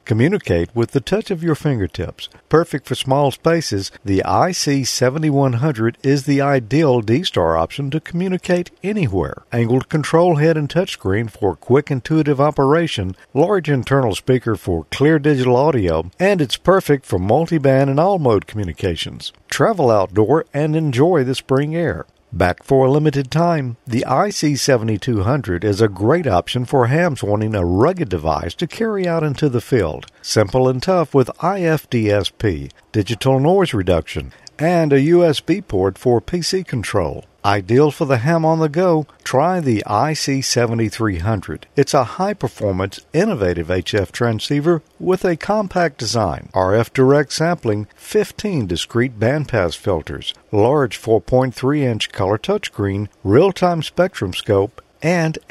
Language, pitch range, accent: English, 105-160 Hz, American